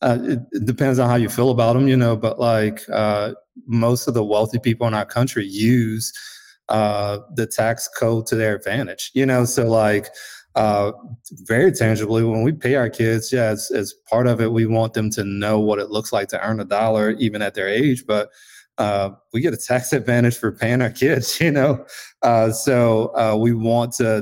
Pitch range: 105-120 Hz